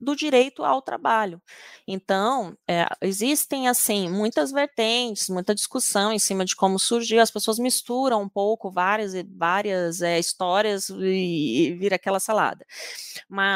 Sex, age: female, 20-39